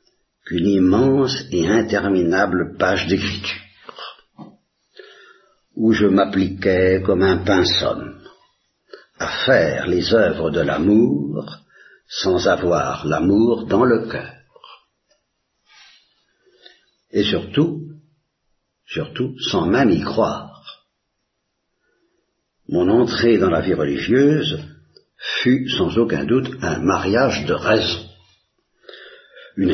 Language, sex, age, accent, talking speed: Italian, male, 60-79, French, 95 wpm